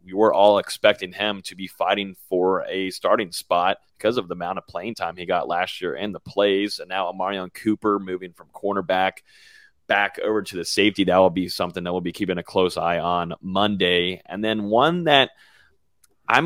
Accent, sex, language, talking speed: American, male, English, 205 wpm